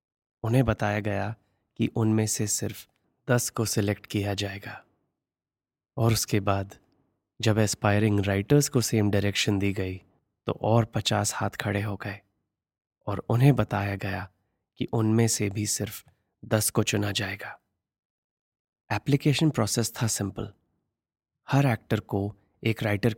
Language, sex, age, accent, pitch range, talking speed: Hindi, male, 20-39, native, 100-115 Hz, 135 wpm